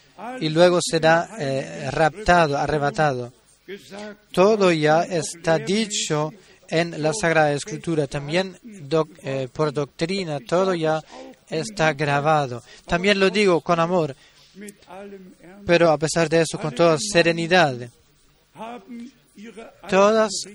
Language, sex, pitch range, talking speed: Spanish, male, 155-200 Hz, 110 wpm